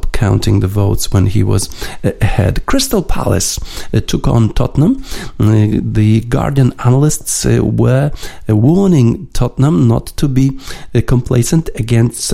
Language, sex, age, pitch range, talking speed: Polish, male, 50-69, 105-125 Hz, 135 wpm